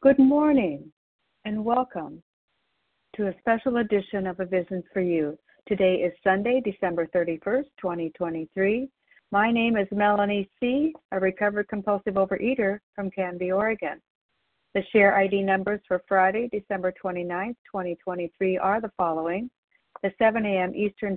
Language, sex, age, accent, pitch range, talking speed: English, female, 60-79, American, 180-210 Hz, 135 wpm